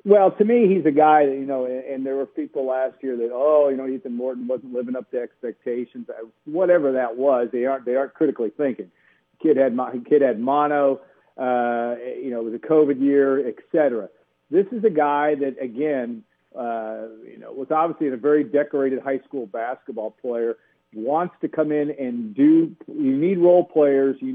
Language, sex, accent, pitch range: English, male, American, 130-170 Hz